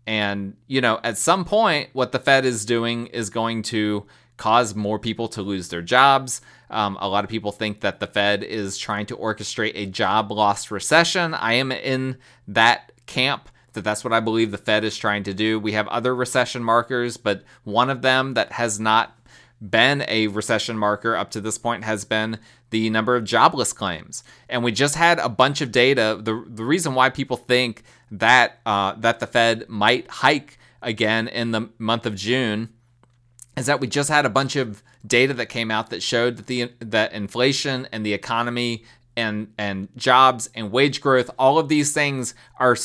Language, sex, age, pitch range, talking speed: English, male, 30-49, 110-130 Hz, 195 wpm